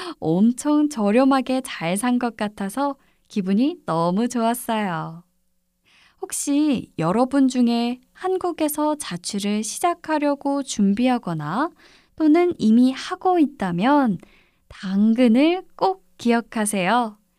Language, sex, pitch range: Korean, female, 190-280 Hz